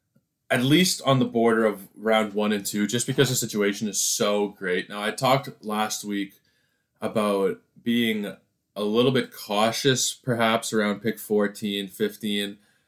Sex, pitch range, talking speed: male, 95-120 Hz, 155 wpm